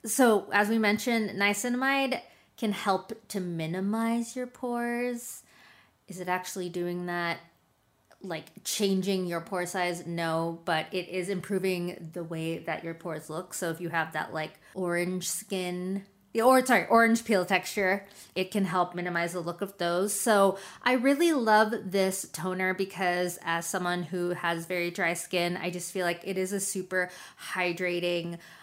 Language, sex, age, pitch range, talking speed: English, female, 20-39, 175-210 Hz, 160 wpm